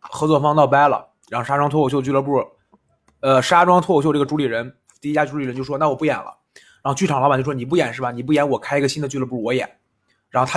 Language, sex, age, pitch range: Chinese, male, 20-39, 130-170 Hz